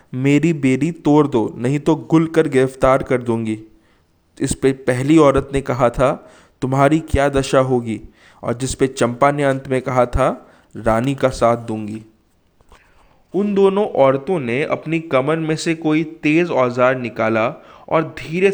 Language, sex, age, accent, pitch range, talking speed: Hindi, male, 20-39, native, 120-155 Hz, 160 wpm